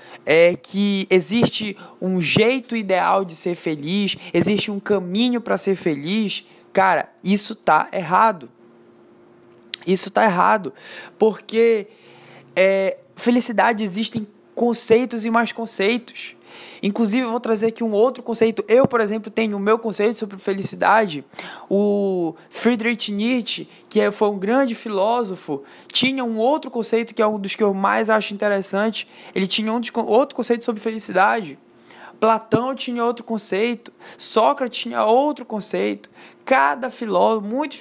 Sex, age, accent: male, 20-39, Brazilian